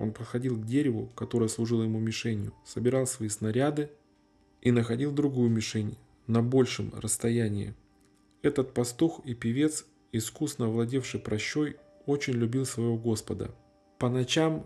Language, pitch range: Russian, 110-135 Hz